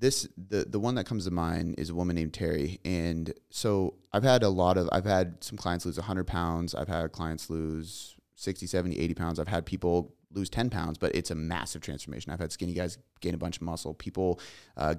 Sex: male